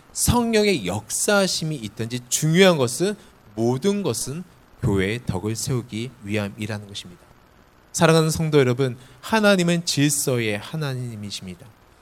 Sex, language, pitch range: male, Korean, 125-190 Hz